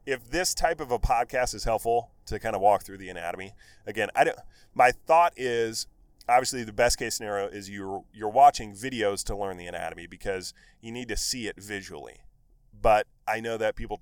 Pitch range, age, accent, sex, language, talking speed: 90-110 Hz, 30-49, American, male, English, 200 wpm